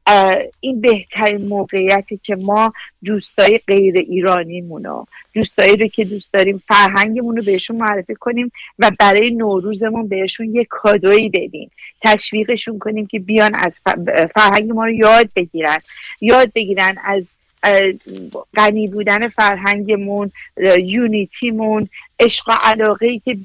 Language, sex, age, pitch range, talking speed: Persian, female, 50-69, 195-230 Hz, 120 wpm